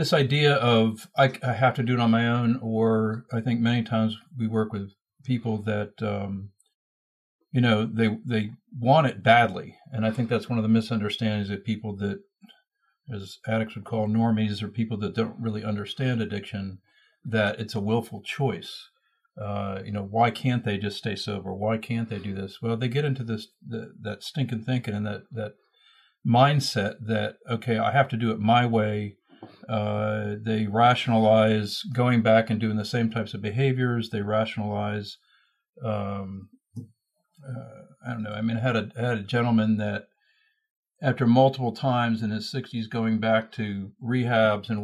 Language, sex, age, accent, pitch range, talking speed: English, male, 50-69, American, 105-125 Hz, 180 wpm